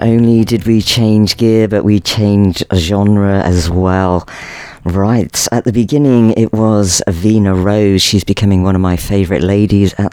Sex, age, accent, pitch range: female, 40-59, British, 90-110 Hz